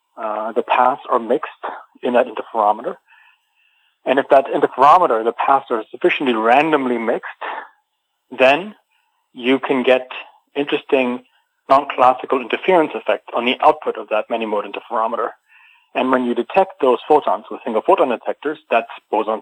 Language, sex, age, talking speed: English, male, 40-59, 140 wpm